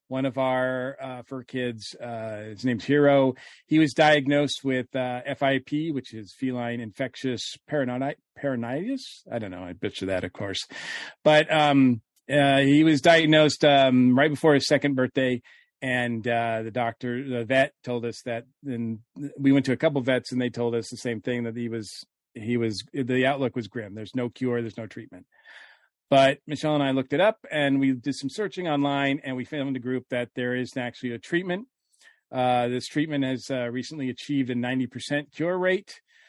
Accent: American